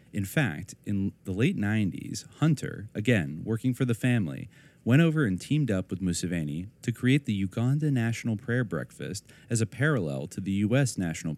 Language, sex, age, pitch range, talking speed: English, male, 30-49, 90-125 Hz, 175 wpm